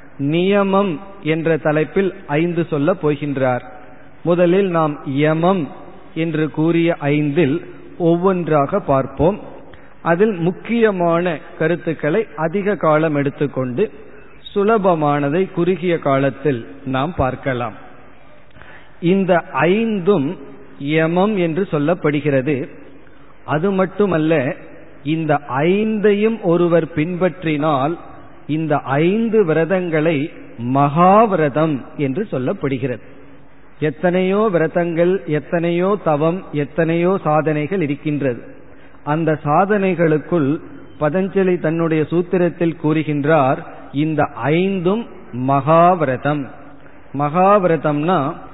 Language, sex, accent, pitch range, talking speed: Tamil, male, native, 145-180 Hz, 70 wpm